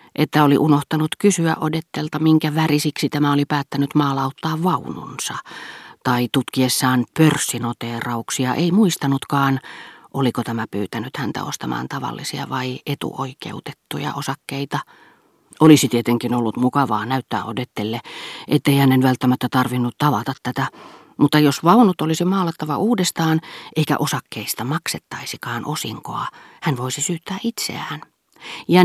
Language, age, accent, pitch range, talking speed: Finnish, 40-59, native, 125-155 Hz, 110 wpm